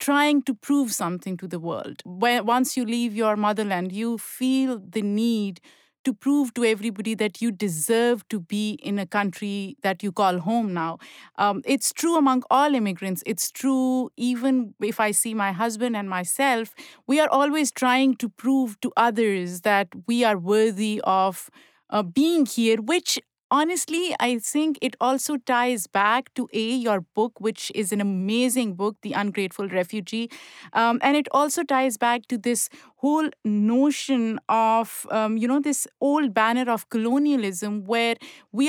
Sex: female